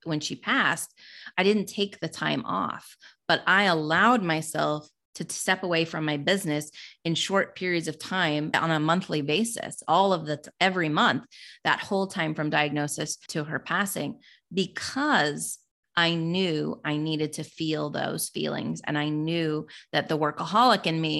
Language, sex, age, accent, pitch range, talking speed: English, female, 30-49, American, 150-185 Hz, 165 wpm